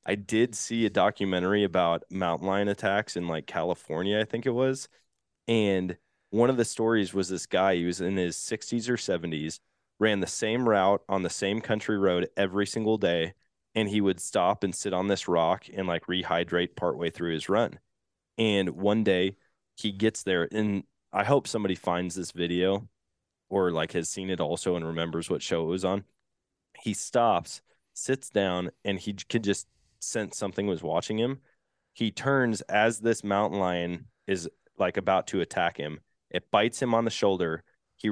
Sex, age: male, 20-39